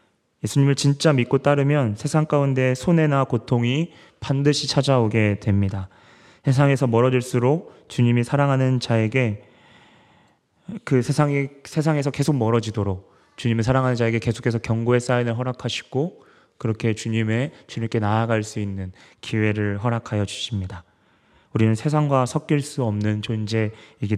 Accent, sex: native, male